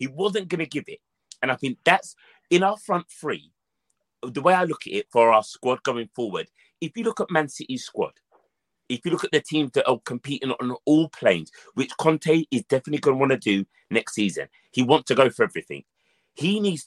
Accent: British